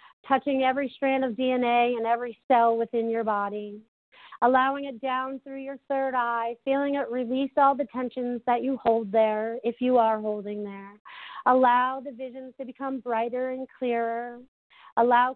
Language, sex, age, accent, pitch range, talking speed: English, female, 40-59, American, 235-265 Hz, 165 wpm